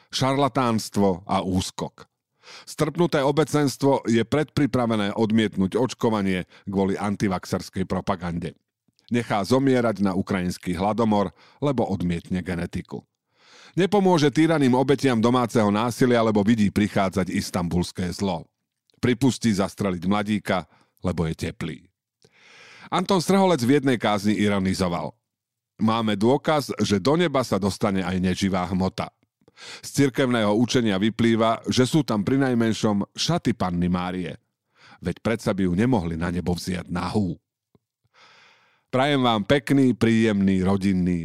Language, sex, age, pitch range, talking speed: Slovak, male, 50-69, 95-125 Hz, 115 wpm